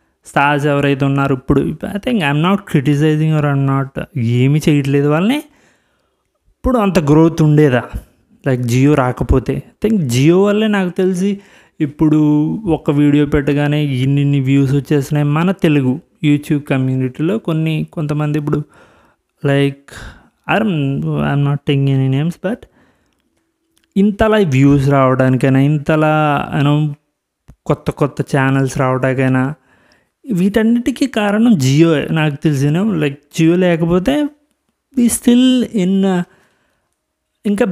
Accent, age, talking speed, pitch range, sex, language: native, 20-39, 110 wpm, 135-185 Hz, male, Telugu